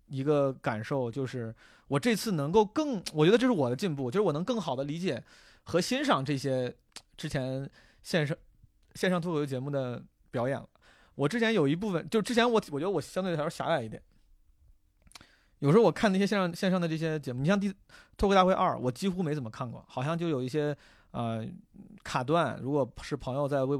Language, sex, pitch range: Chinese, male, 125-170 Hz